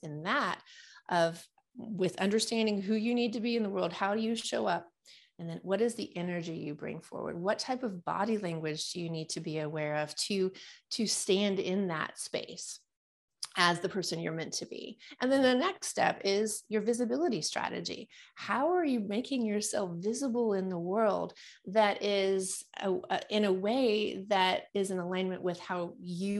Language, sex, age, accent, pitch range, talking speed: English, female, 30-49, American, 180-240 Hz, 190 wpm